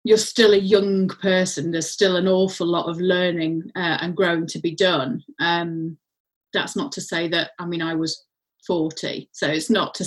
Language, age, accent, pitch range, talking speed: English, 30-49, British, 175-215 Hz, 195 wpm